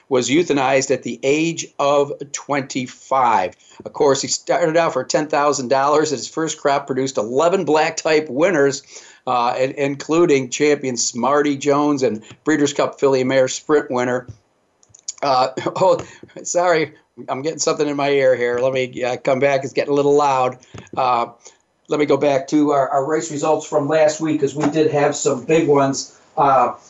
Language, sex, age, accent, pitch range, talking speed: English, male, 50-69, American, 140-165 Hz, 165 wpm